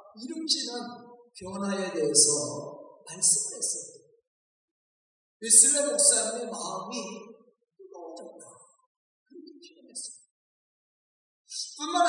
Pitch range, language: 230-315 Hz, Korean